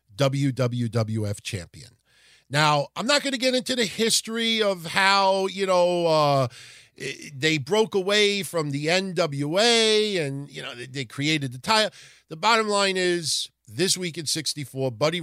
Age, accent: 50-69, American